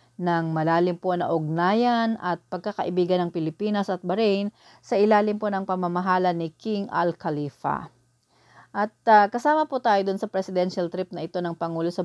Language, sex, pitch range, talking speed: English, female, 165-190 Hz, 160 wpm